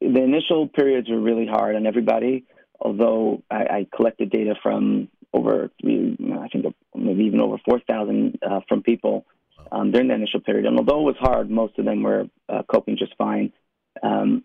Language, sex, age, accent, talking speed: English, male, 30-49, American, 175 wpm